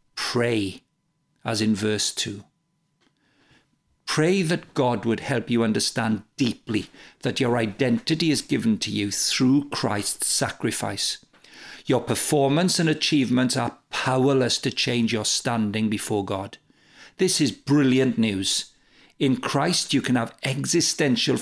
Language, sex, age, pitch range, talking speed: English, male, 50-69, 110-150 Hz, 125 wpm